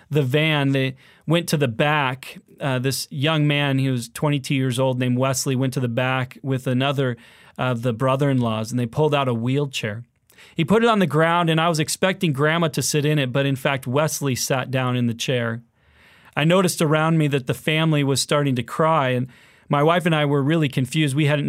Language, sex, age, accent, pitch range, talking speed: English, male, 30-49, American, 125-150 Hz, 220 wpm